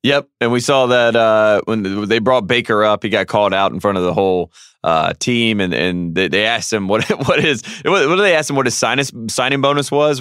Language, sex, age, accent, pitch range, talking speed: English, male, 20-39, American, 100-125 Hz, 245 wpm